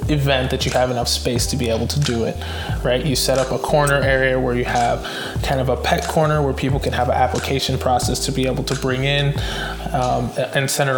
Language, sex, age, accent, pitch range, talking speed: English, male, 20-39, American, 125-140 Hz, 235 wpm